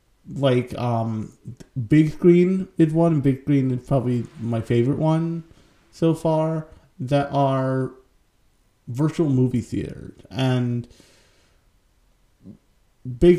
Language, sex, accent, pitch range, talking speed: English, male, American, 115-140 Hz, 105 wpm